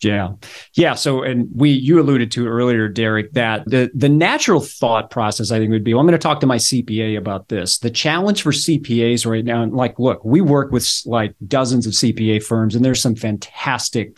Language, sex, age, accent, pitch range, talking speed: English, male, 30-49, American, 110-140 Hz, 215 wpm